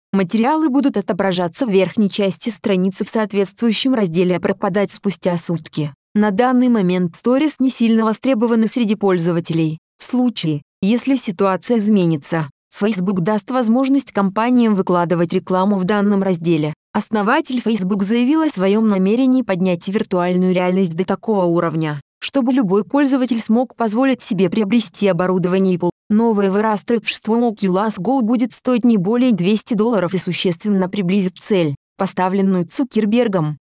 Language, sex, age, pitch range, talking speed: Russian, female, 20-39, 185-235 Hz, 135 wpm